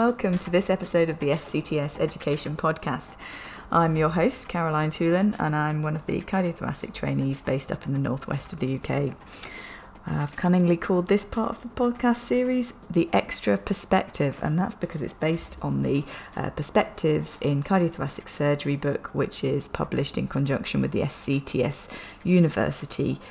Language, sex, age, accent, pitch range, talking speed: English, female, 30-49, British, 140-180 Hz, 160 wpm